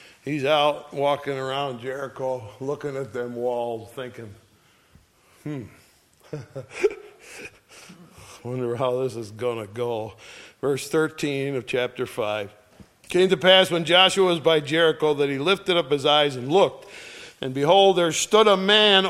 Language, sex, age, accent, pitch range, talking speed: English, male, 60-79, American, 125-165 Hz, 140 wpm